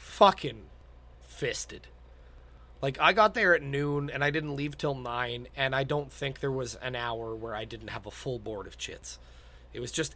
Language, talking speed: English, 200 wpm